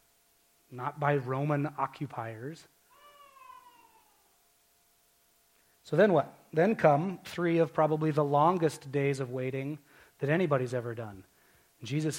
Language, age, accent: English, 30-49, American